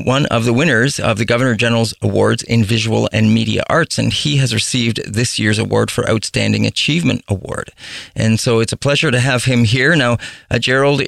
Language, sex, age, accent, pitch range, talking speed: English, male, 40-59, American, 110-130 Hz, 195 wpm